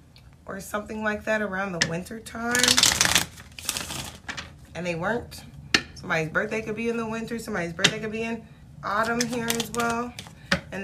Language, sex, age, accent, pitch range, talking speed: English, female, 30-49, American, 195-235 Hz, 155 wpm